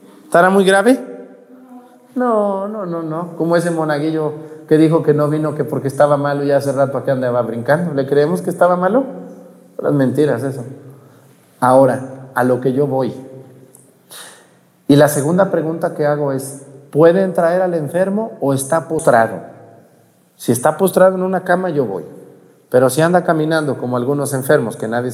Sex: male